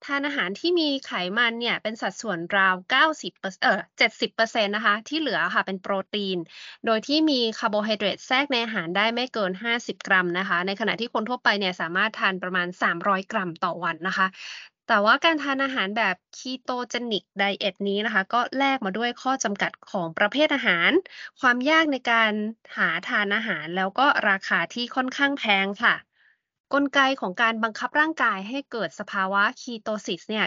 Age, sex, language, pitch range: 20-39, female, Thai, 200-255 Hz